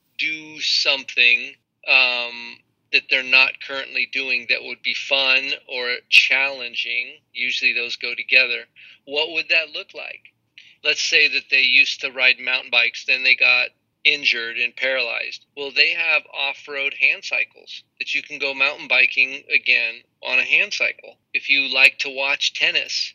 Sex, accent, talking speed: male, American, 160 wpm